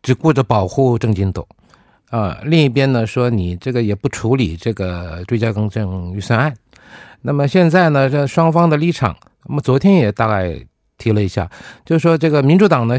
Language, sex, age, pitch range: Korean, male, 50-69, 100-155 Hz